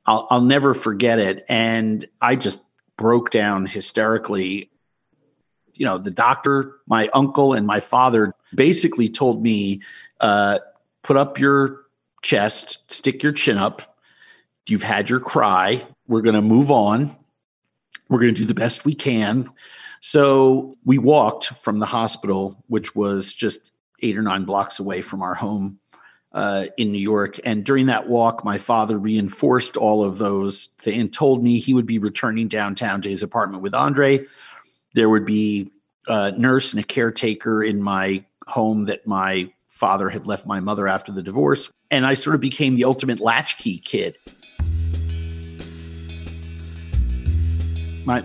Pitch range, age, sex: 100-125 Hz, 50-69, male